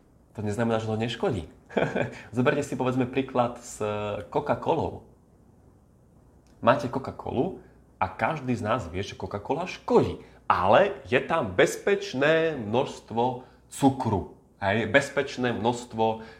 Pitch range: 95-130 Hz